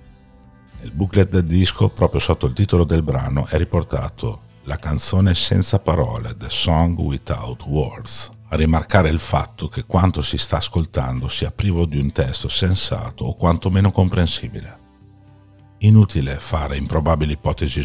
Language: Italian